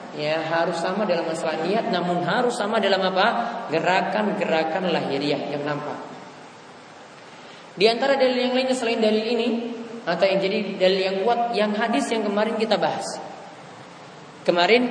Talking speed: 145 wpm